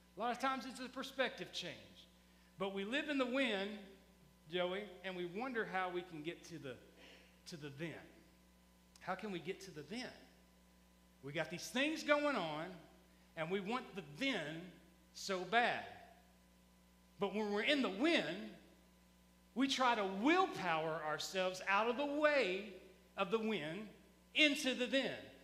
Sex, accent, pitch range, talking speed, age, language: male, American, 185-265 Hz, 160 wpm, 40-59, English